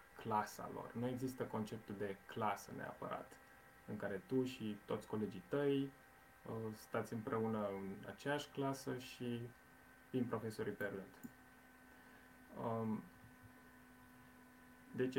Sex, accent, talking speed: male, native, 95 wpm